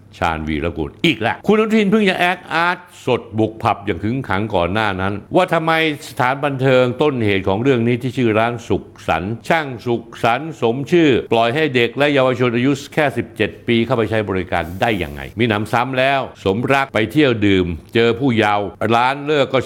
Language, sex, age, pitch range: Thai, male, 60-79, 100-130 Hz